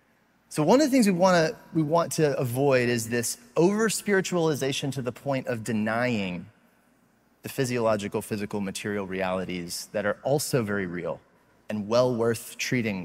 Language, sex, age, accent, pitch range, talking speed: English, male, 30-49, American, 110-140 Hz, 155 wpm